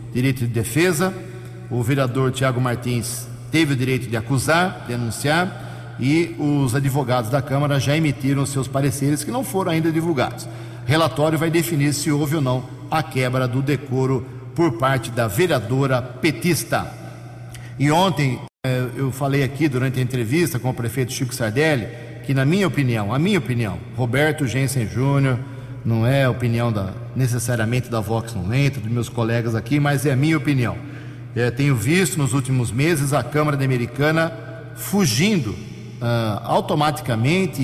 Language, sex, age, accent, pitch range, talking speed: English, male, 50-69, Brazilian, 120-150 Hz, 160 wpm